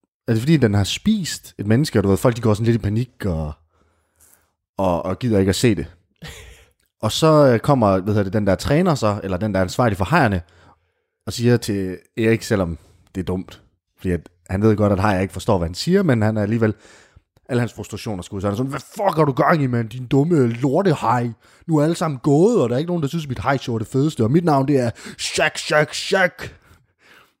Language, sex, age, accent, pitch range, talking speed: Danish, male, 30-49, native, 105-160 Hz, 240 wpm